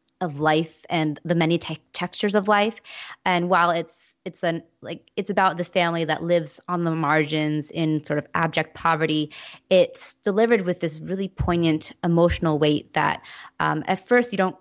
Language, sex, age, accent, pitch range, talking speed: English, female, 20-39, American, 160-180 Hz, 175 wpm